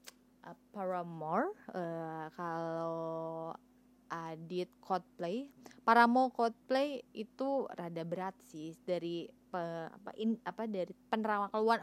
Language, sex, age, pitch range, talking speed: Indonesian, female, 20-39, 180-235 Hz, 105 wpm